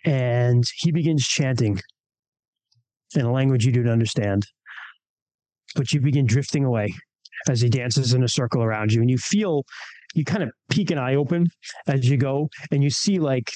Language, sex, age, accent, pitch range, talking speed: English, male, 30-49, American, 115-145 Hz, 175 wpm